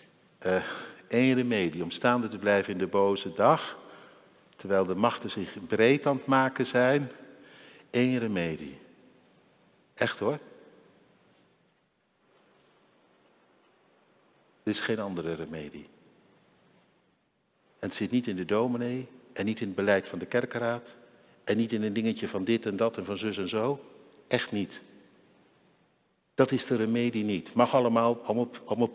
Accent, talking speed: Dutch, 140 wpm